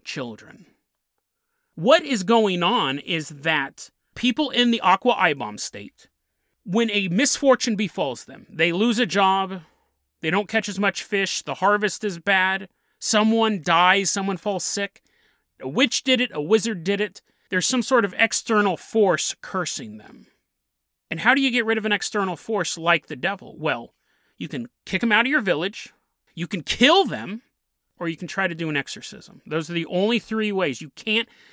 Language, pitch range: English, 160-230 Hz